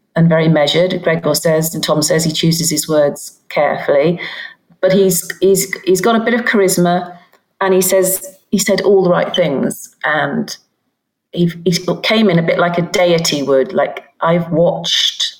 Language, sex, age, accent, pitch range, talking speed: English, female, 40-59, British, 160-195 Hz, 175 wpm